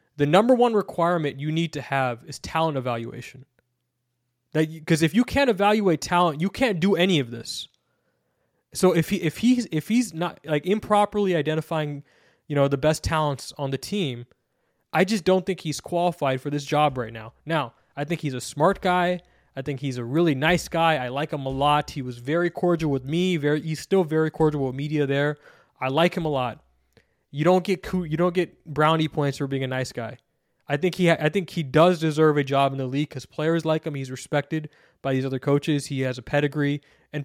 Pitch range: 140-175 Hz